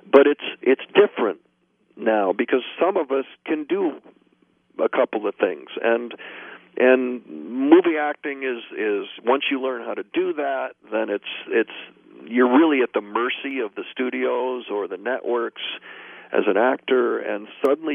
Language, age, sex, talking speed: English, 50-69, male, 155 wpm